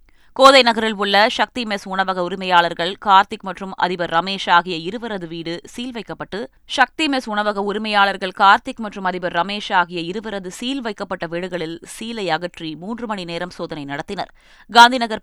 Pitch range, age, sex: 170-215 Hz, 20-39, female